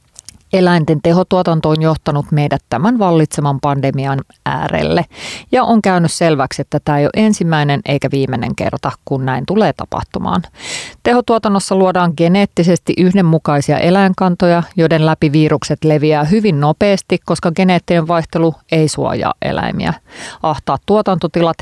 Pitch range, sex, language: 145-185 Hz, female, Finnish